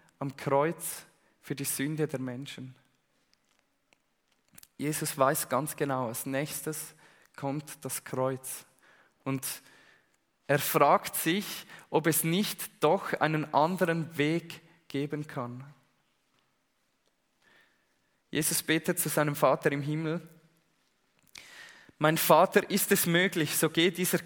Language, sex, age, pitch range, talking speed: German, male, 20-39, 135-160 Hz, 110 wpm